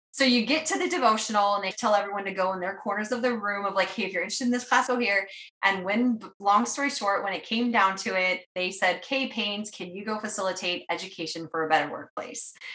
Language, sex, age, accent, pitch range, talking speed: English, female, 20-39, American, 175-215 Hz, 250 wpm